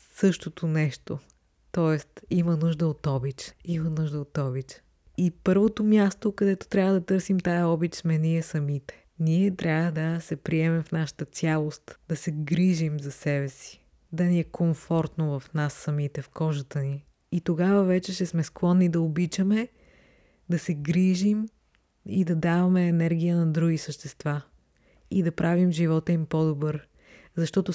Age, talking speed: 20-39, 155 wpm